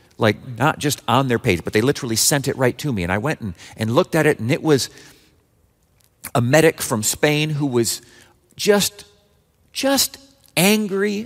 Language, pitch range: English, 130-200 Hz